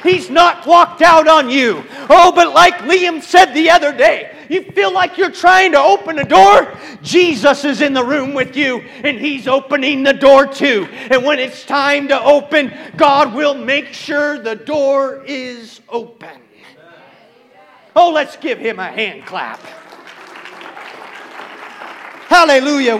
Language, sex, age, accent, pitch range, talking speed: English, male, 40-59, American, 180-290 Hz, 150 wpm